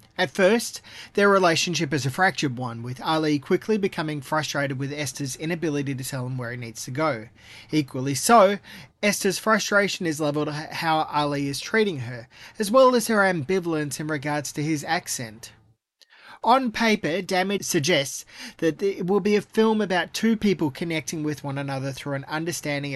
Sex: male